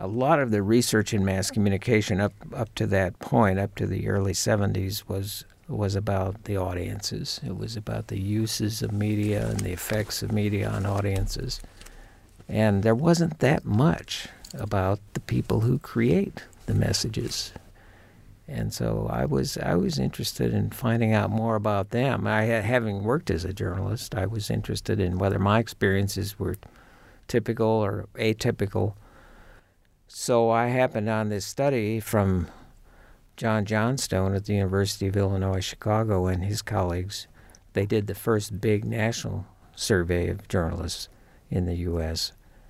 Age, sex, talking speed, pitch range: 60-79, male, 155 wpm, 95-110 Hz